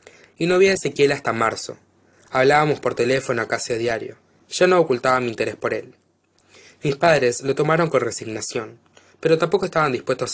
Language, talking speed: Spanish, 175 wpm